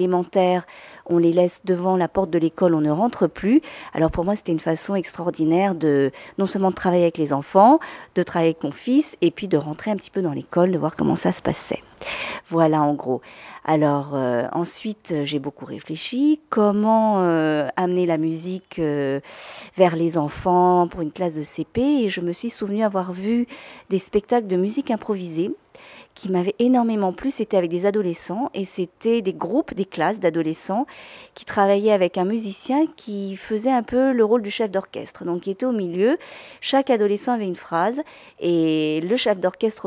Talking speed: 190 wpm